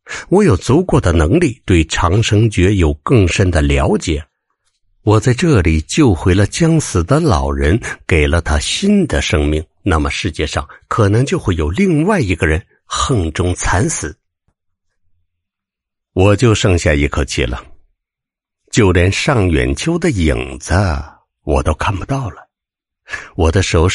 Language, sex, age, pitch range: Chinese, male, 60-79, 75-100 Hz